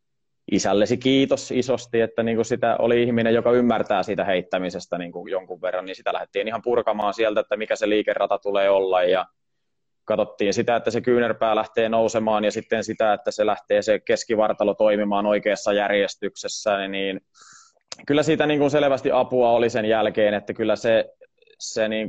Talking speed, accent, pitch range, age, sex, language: 145 wpm, native, 95-120 Hz, 20-39, male, Finnish